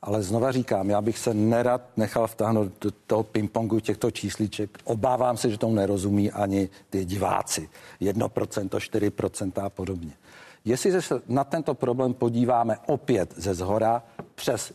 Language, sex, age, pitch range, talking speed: Czech, male, 60-79, 105-135 Hz, 145 wpm